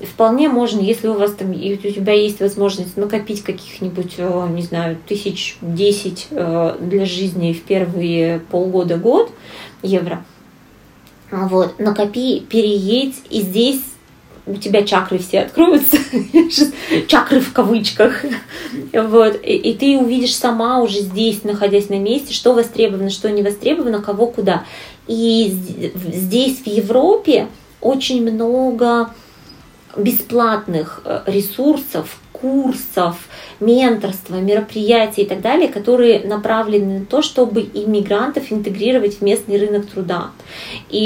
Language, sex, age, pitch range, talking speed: Russian, female, 20-39, 195-235 Hz, 110 wpm